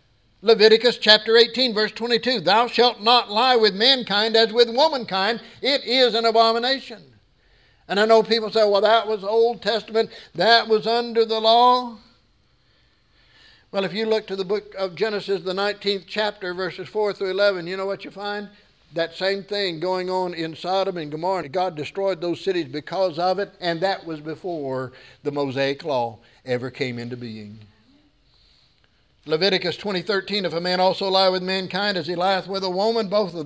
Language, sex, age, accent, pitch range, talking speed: English, male, 60-79, American, 180-225 Hz, 175 wpm